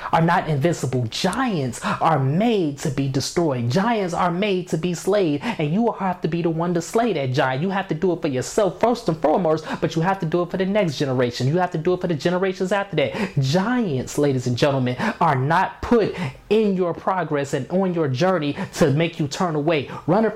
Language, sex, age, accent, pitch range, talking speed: English, male, 20-39, American, 145-195 Hz, 225 wpm